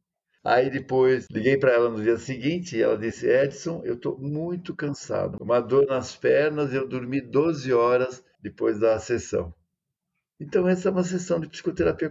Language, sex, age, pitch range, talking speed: Portuguese, male, 60-79, 120-150 Hz, 175 wpm